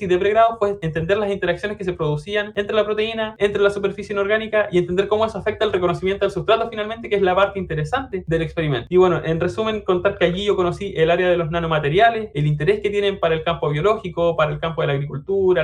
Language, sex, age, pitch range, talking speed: Spanish, male, 20-39, 165-200 Hz, 240 wpm